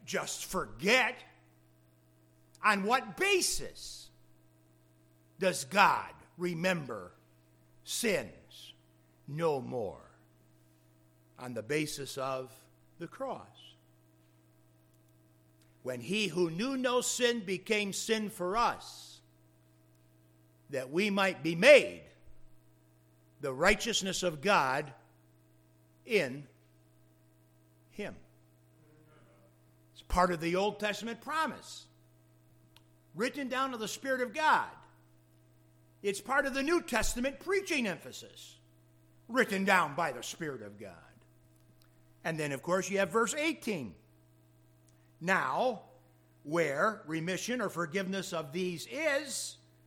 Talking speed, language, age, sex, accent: 100 wpm, English, 60-79, male, American